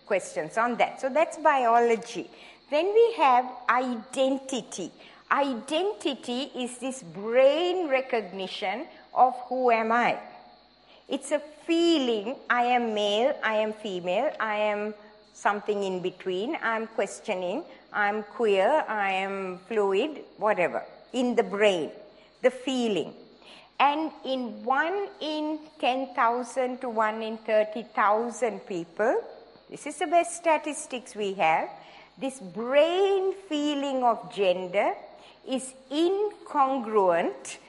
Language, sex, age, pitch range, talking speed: English, female, 50-69, 215-270 Hz, 110 wpm